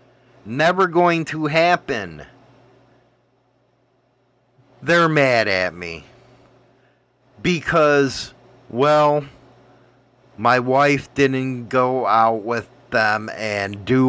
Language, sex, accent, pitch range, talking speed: English, male, American, 125-160 Hz, 80 wpm